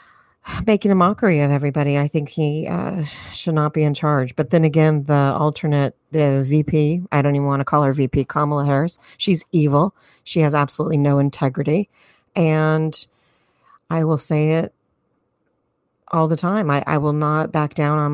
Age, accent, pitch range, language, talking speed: 40-59, American, 140-160 Hz, English, 175 wpm